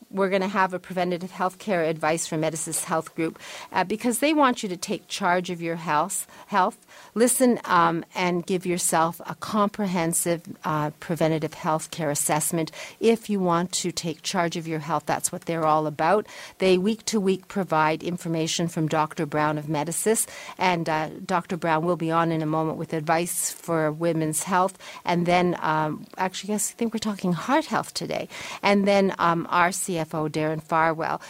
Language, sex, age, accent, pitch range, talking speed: English, female, 50-69, American, 165-195 Hz, 185 wpm